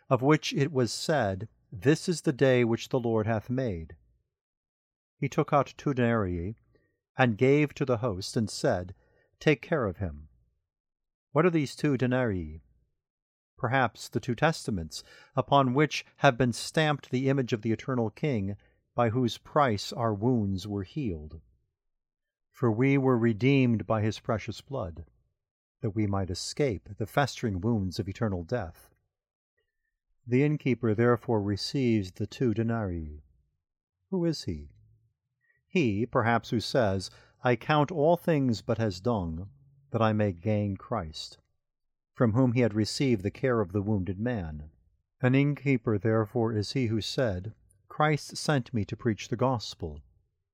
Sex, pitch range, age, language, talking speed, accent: male, 100-135 Hz, 50-69, English, 150 wpm, American